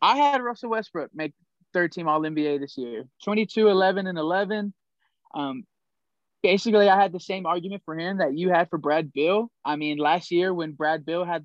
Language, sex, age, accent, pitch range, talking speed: English, male, 20-39, American, 150-180 Hz, 175 wpm